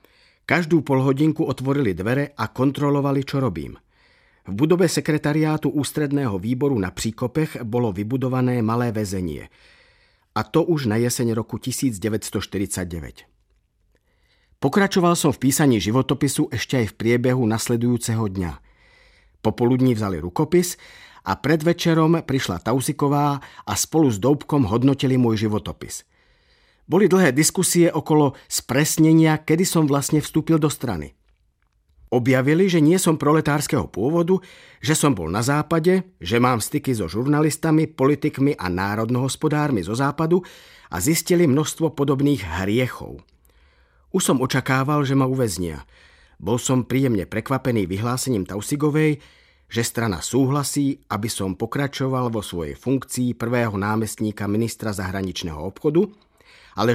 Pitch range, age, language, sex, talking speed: 110-150 Hz, 50-69, Czech, male, 120 wpm